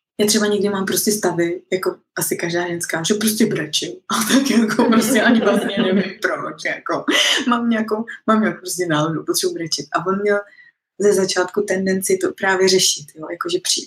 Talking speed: 180 wpm